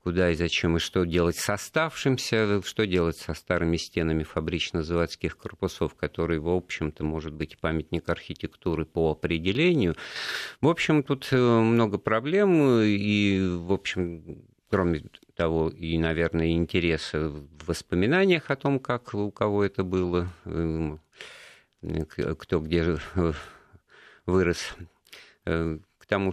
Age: 50-69